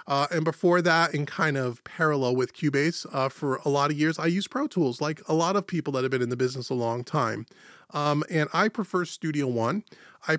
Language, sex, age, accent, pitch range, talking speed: English, male, 30-49, American, 145-180 Hz, 235 wpm